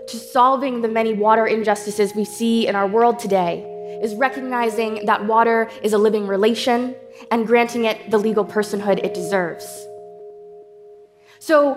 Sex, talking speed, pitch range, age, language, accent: female, 150 wpm, 210-265 Hz, 20-39, English, American